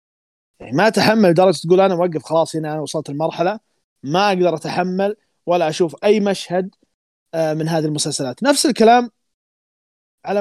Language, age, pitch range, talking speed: Arabic, 20-39, 160-200 Hz, 145 wpm